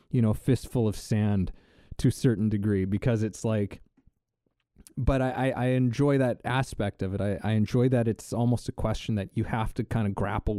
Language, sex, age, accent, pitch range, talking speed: English, male, 20-39, American, 100-125 Hz, 200 wpm